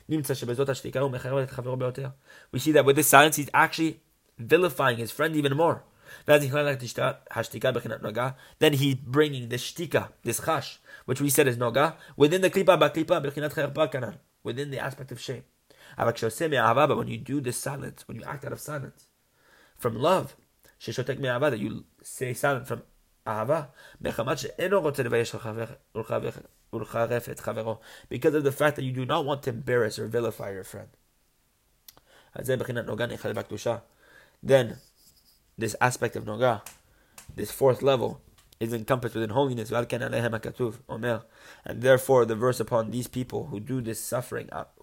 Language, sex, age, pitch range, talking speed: English, male, 30-49, 115-145 Hz, 120 wpm